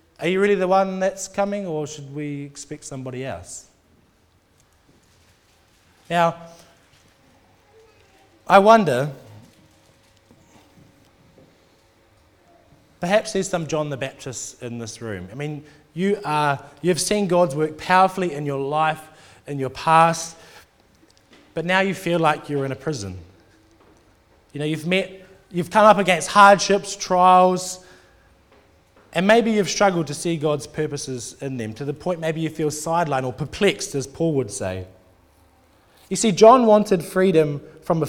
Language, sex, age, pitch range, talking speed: English, male, 20-39, 125-175 Hz, 140 wpm